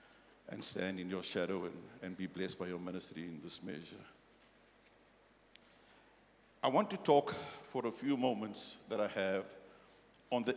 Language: English